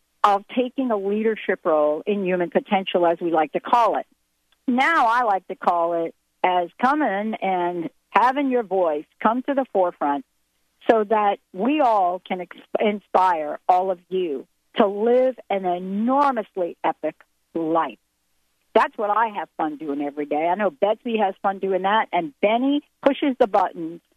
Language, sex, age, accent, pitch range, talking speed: English, female, 50-69, American, 175-240 Hz, 165 wpm